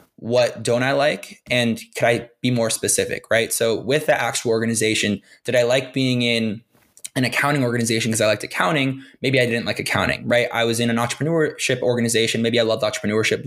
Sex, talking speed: male, 195 wpm